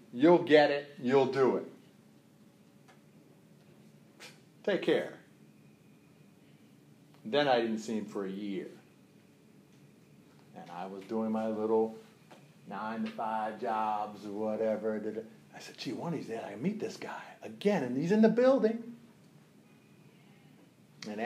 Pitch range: 110-165 Hz